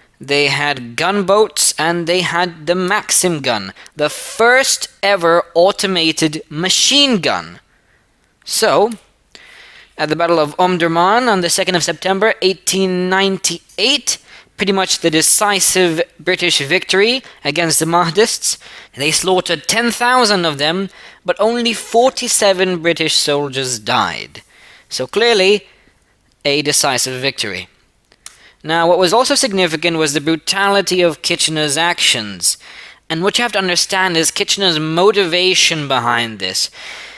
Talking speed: 120 wpm